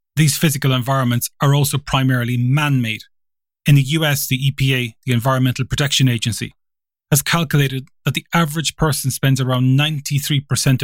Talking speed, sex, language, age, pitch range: 145 wpm, male, English, 30-49, 125-150 Hz